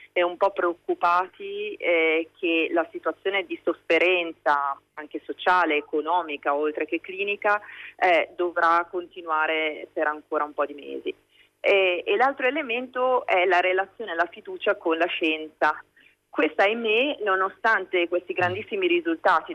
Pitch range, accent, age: 160-200 Hz, native, 30-49